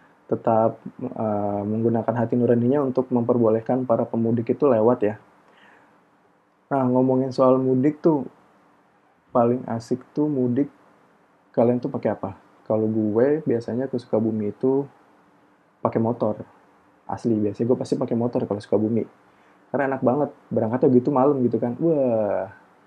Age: 20-39